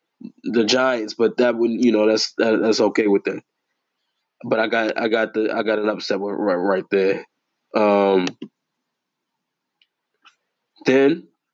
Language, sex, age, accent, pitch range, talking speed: English, male, 20-39, American, 115-140 Hz, 150 wpm